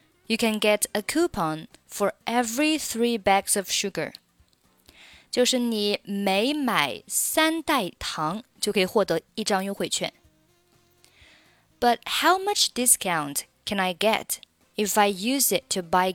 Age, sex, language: 20-39, female, Chinese